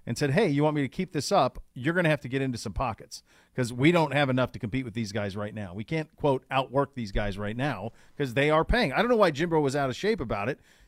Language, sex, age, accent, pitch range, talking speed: English, male, 40-59, American, 120-170 Hz, 300 wpm